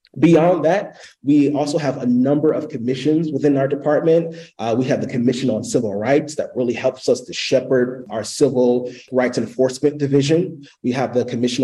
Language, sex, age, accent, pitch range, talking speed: English, male, 30-49, American, 120-145 Hz, 180 wpm